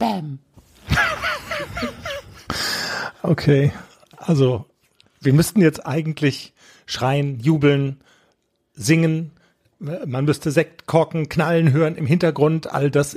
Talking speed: 80 wpm